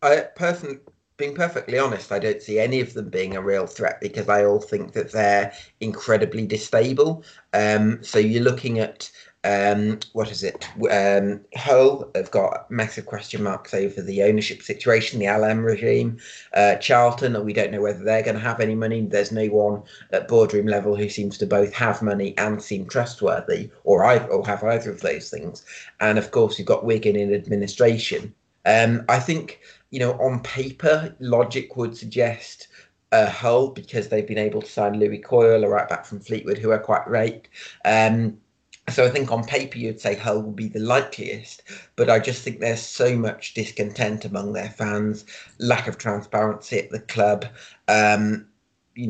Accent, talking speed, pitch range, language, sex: British, 180 wpm, 105-115 Hz, English, male